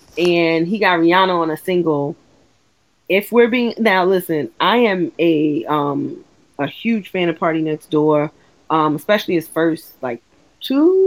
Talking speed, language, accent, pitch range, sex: 155 wpm, English, American, 160-205 Hz, female